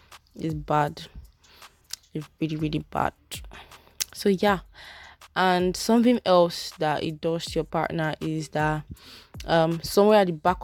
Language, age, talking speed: English, 20-39, 135 wpm